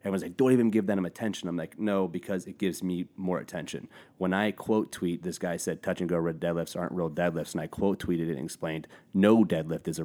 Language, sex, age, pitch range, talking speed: English, male, 30-49, 85-95 Hz, 250 wpm